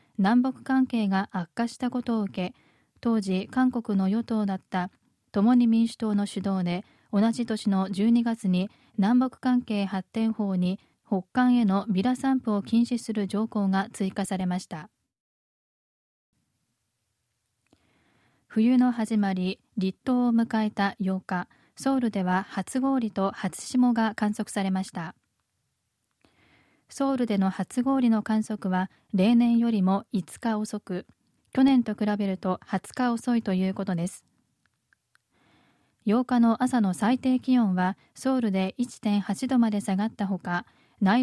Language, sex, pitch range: Japanese, female, 195-240 Hz